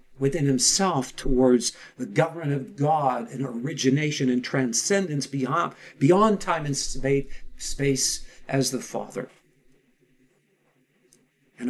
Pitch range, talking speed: 130-180 Hz, 105 wpm